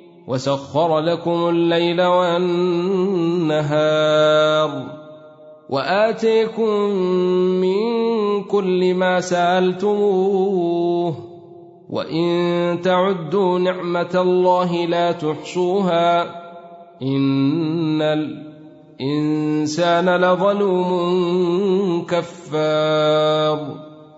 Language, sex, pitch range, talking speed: Arabic, male, 165-185 Hz, 45 wpm